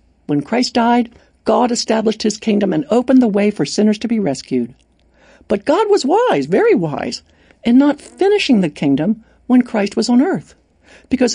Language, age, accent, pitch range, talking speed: English, 60-79, American, 170-265 Hz, 175 wpm